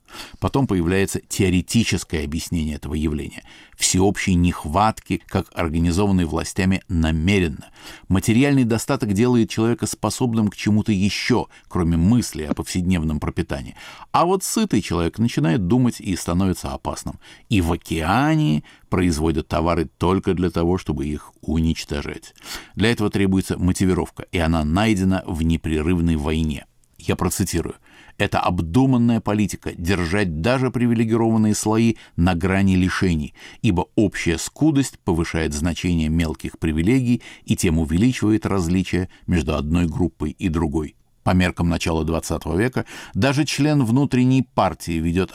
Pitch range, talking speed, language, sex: 80-105 Hz, 125 wpm, Russian, male